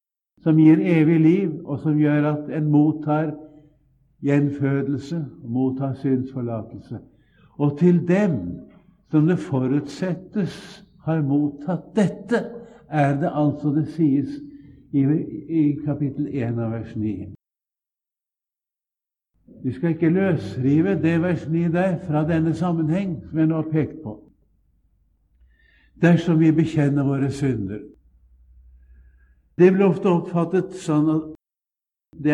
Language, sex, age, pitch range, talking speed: English, male, 60-79, 115-160 Hz, 135 wpm